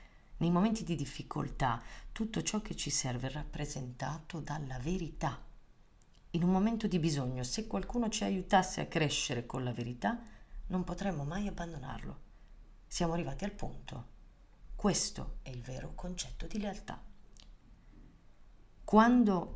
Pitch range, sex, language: 125-175 Hz, female, Italian